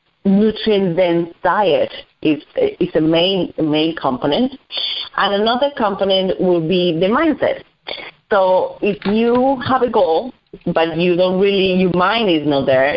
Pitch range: 165-210 Hz